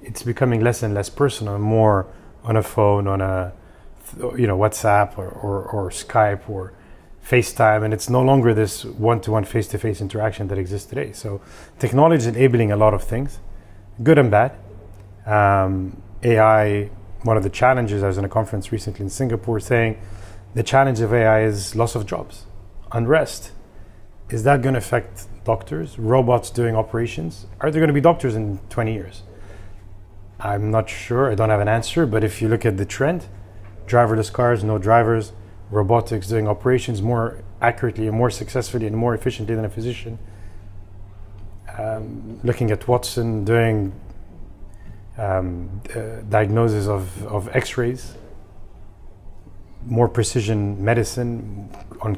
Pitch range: 100-120 Hz